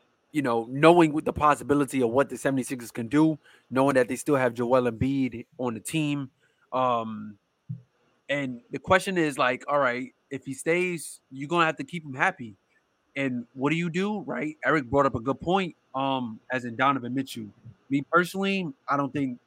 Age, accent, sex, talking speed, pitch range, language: 20-39, American, male, 190 wpm, 125-155 Hz, English